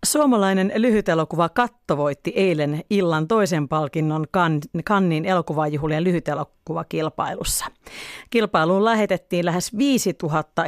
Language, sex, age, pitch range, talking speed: Finnish, female, 40-59, 160-210 Hz, 105 wpm